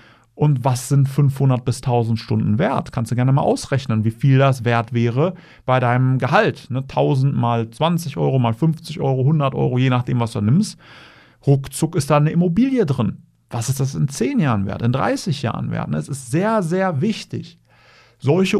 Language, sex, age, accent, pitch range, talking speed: German, male, 40-59, German, 115-150 Hz, 185 wpm